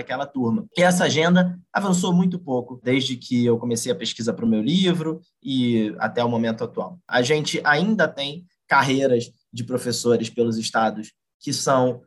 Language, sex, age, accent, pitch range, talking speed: Portuguese, male, 20-39, Brazilian, 120-155 Hz, 170 wpm